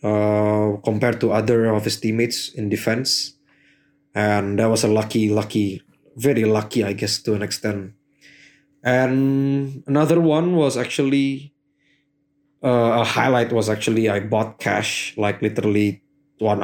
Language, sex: English, male